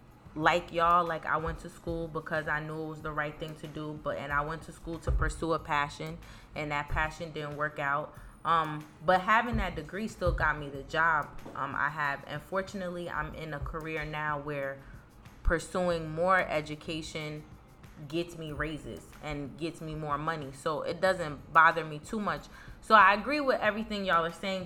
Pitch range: 150-180 Hz